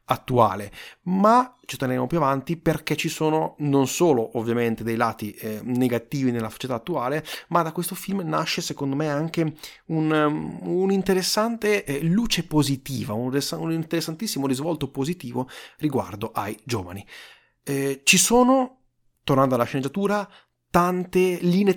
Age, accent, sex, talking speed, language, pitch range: 30-49, native, male, 135 wpm, Italian, 120-170 Hz